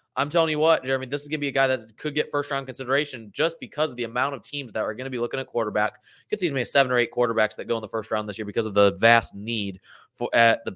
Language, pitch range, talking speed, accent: English, 120-165 Hz, 315 wpm, American